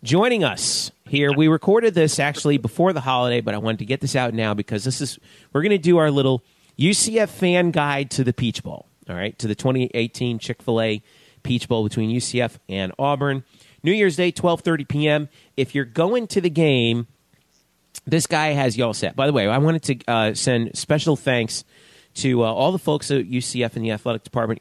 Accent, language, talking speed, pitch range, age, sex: American, English, 205 wpm, 115-150 Hz, 40-59, male